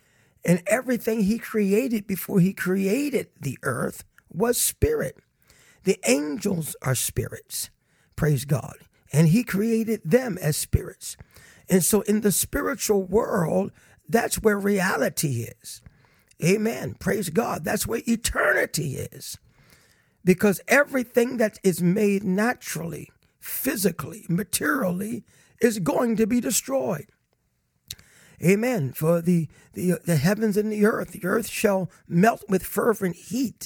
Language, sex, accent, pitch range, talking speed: English, male, American, 170-225 Hz, 125 wpm